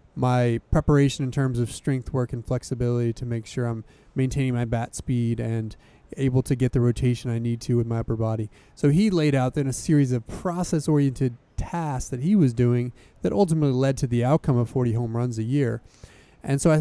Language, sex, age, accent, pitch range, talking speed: English, male, 30-49, American, 120-140 Hz, 215 wpm